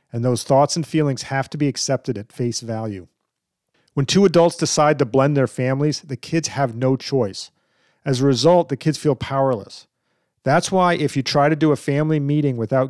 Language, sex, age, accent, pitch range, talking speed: English, male, 40-59, American, 125-150 Hz, 200 wpm